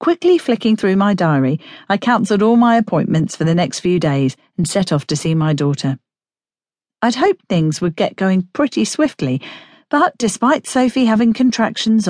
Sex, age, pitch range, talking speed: female, 40-59, 165-235 Hz, 175 wpm